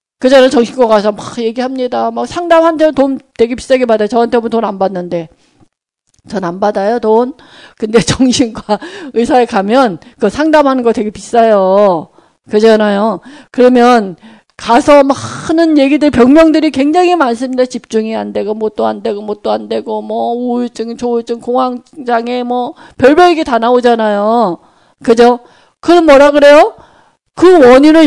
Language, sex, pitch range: Korean, female, 220-290 Hz